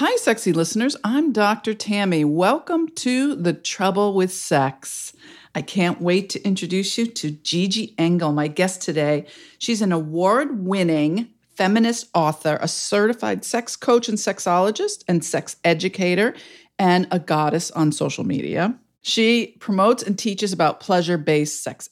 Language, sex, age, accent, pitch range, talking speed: English, female, 50-69, American, 170-225 Hz, 140 wpm